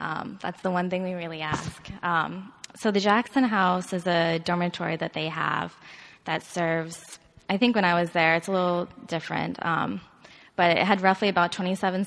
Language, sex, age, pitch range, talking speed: English, female, 20-39, 170-200 Hz, 190 wpm